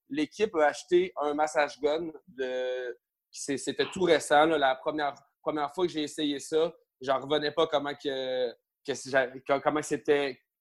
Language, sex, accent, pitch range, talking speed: French, male, Canadian, 135-165 Hz, 155 wpm